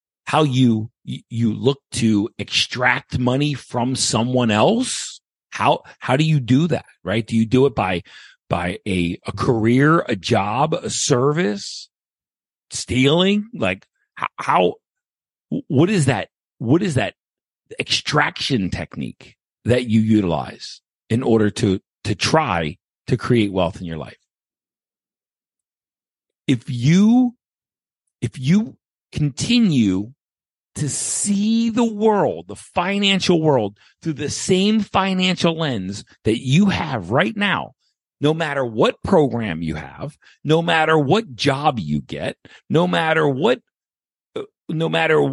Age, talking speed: 50-69, 125 wpm